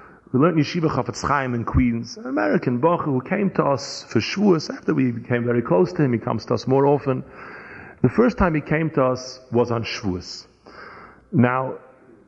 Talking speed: 195 wpm